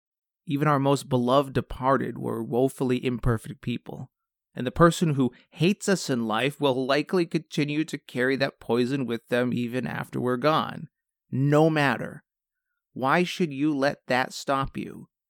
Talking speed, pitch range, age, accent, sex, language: 155 wpm, 120-150 Hz, 30-49, American, male, English